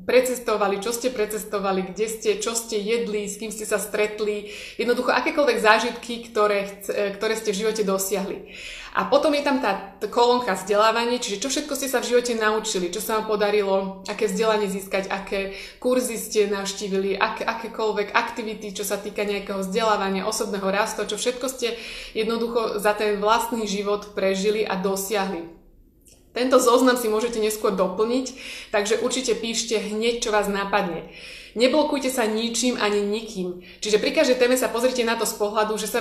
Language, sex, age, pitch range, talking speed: Slovak, female, 20-39, 200-230 Hz, 165 wpm